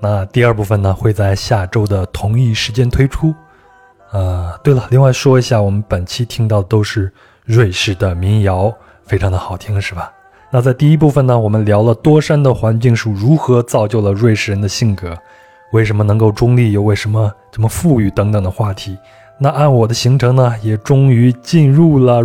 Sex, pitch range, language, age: male, 105-125 Hz, Chinese, 20-39